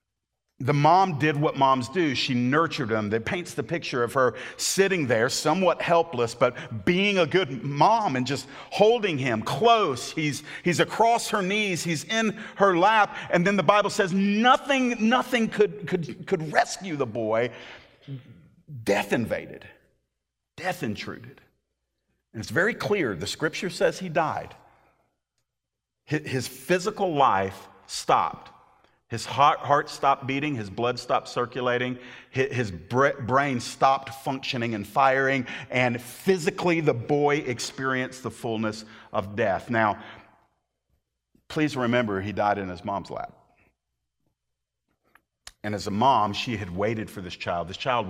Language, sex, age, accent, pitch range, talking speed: English, male, 50-69, American, 115-175 Hz, 140 wpm